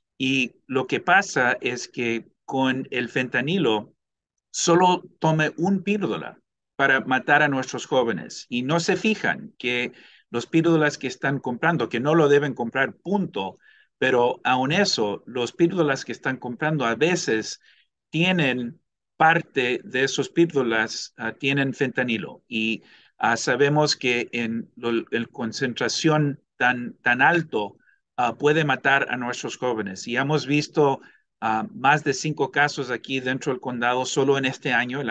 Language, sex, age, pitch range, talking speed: English, male, 50-69, 125-155 Hz, 145 wpm